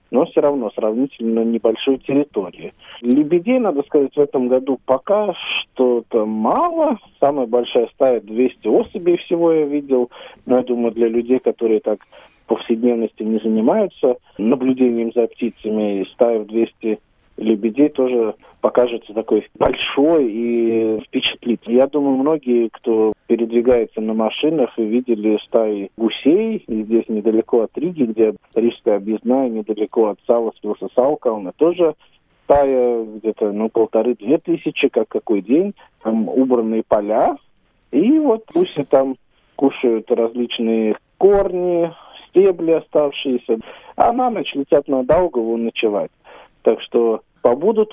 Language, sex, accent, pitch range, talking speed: Russian, male, native, 115-155 Hz, 125 wpm